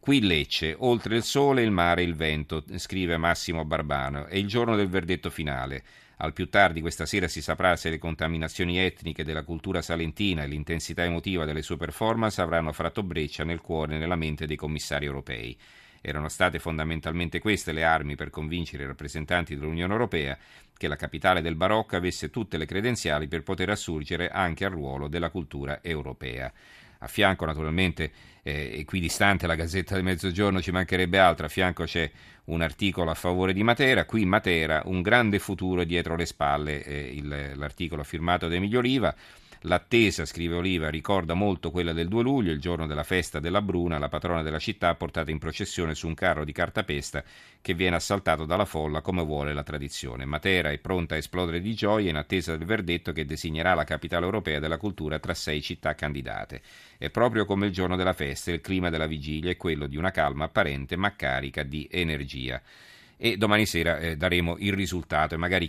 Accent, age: native, 40-59